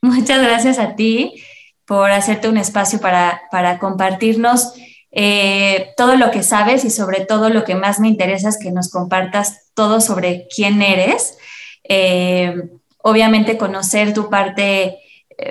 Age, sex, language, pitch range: 20-39, female, Spanish, 195-235 Hz